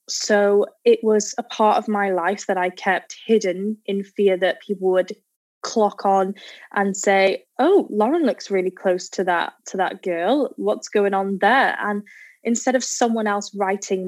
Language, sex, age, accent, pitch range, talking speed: English, female, 10-29, British, 180-205 Hz, 175 wpm